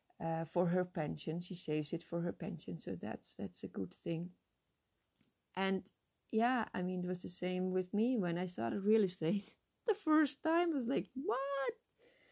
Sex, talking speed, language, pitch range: female, 185 wpm, English, 165-220 Hz